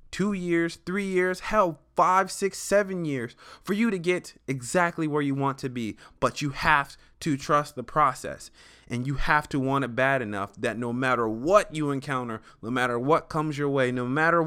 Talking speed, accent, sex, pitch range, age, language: 200 wpm, American, male, 110-150 Hz, 20-39, English